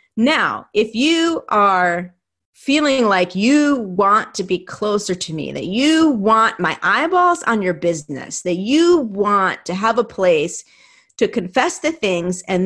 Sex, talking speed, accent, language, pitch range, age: female, 155 wpm, American, English, 185-250 Hz, 40-59